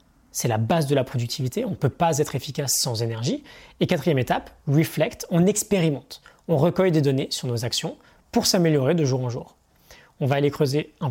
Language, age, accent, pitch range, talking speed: French, 20-39, French, 140-185 Hz, 205 wpm